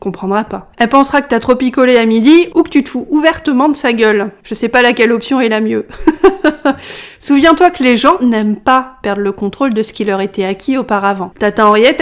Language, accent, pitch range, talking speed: French, French, 210-275 Hz, 225 wpm